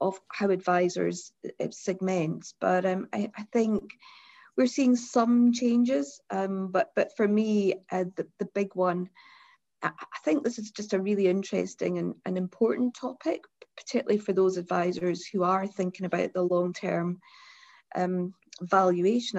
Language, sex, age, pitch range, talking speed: English, female, 40-59, 180-220 Hz, 140 wpm